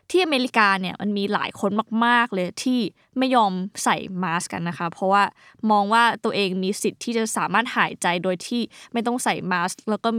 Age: 20-39